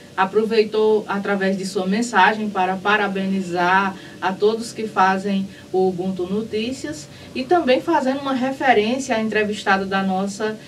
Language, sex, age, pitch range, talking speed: Portuguese, female, 20-39, 195-235 Hz, 130 wpm